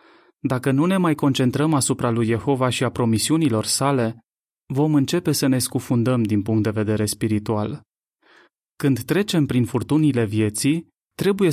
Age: 30-49